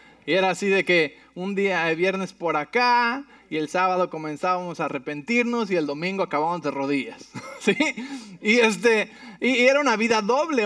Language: English